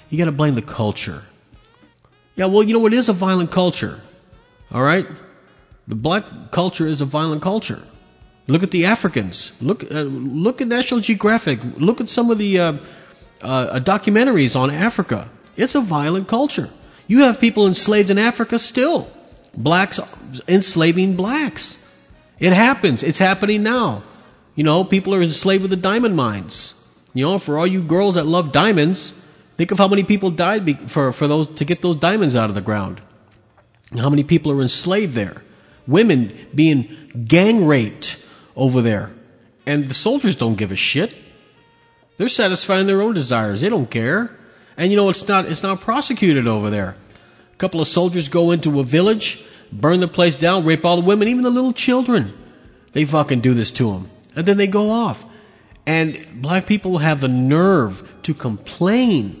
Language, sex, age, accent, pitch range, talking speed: English, male, 40-59, American, 135-200 Hz, 175 wpm